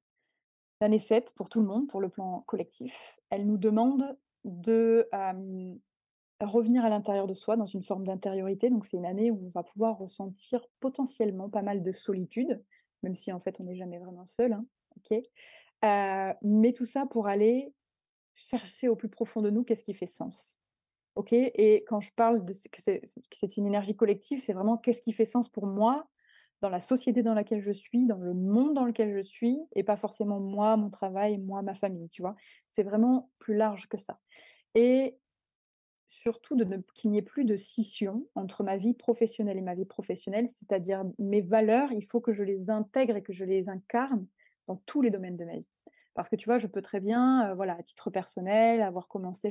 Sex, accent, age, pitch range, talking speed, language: female, French, 20-39, 195-235 Hz, 205 wpm, French